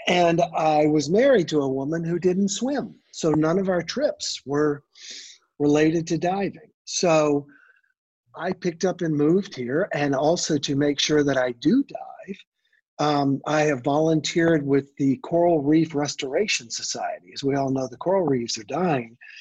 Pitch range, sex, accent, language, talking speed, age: 140-175 Hz, male, American, English, 165 wpm, 50-69